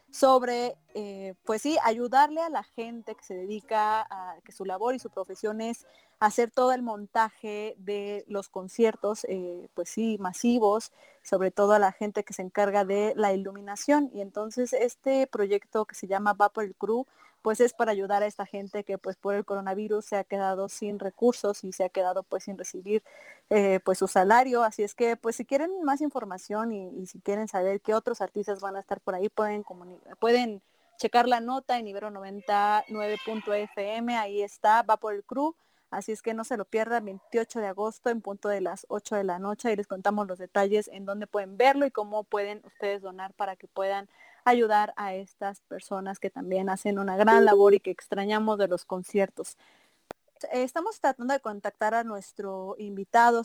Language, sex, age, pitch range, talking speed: English, female, 30-49, 200-235 Hz, 190 wpm